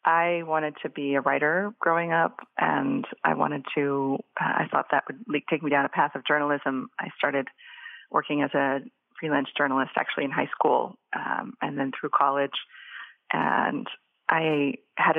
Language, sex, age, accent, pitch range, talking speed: English, female, 30-49, American, 140-155 Hz, 165 wpm